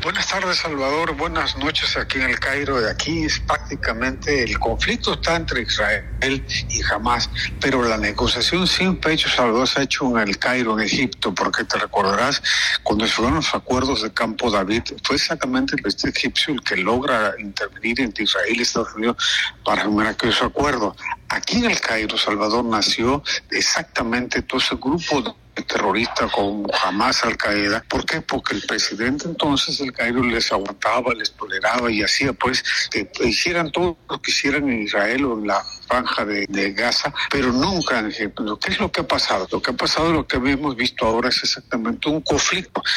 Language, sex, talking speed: Spanish, male, 185 wpm